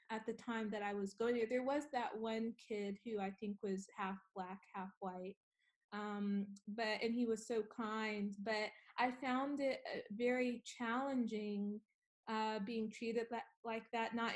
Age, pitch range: 20-39, 205-230 Hz